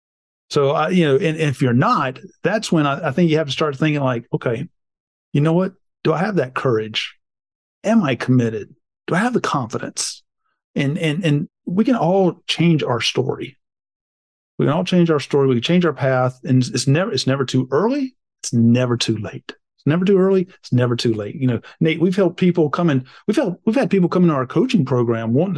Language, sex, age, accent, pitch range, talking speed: English, male, 40-59, American, 135-190 Hz, 215 wpm